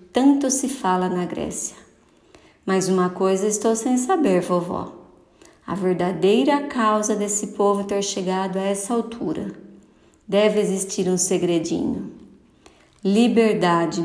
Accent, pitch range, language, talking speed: Brazilian, 185-210 Hz, Portuguese, 115 wpm